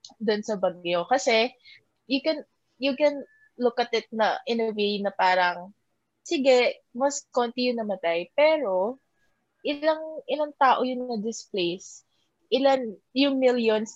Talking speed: 135 wpm